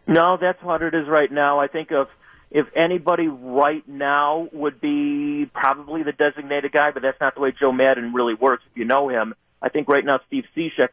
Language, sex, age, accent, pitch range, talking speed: English, male, 40-59, American, 125-160 Hz, 215 wpm